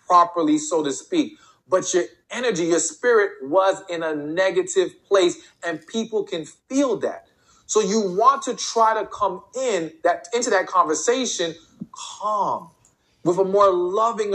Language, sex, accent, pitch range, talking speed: English, male, American, 170-260 Hz, 150 wpm